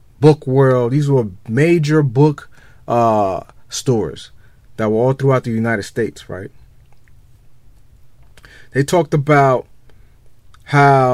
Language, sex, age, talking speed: English, male, 30-49, 110 wpm